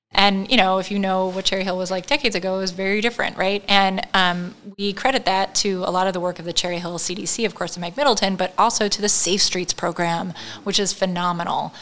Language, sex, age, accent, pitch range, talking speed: English, female, 20-39, American, 180-205 Hz, 250 wpm